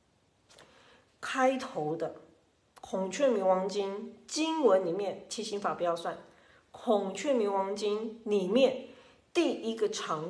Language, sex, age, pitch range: Chinese, female, 40-59, 185-260 Hz